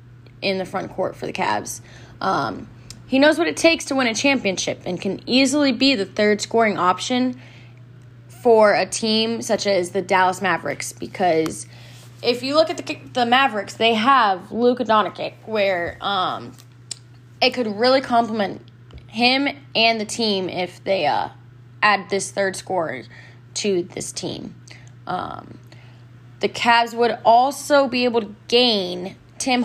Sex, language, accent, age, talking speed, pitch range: female, English, American, 10-29, 150 wpm, 190-245 Hz